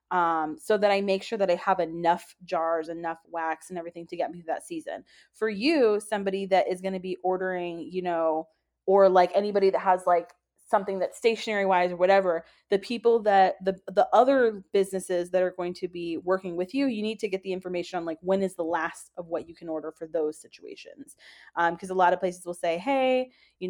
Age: 20-39